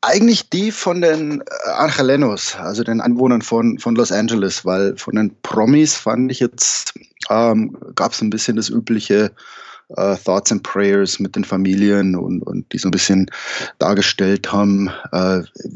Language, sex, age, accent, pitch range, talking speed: German, male, 20-39, German, 100-125 Hz, 160 wpm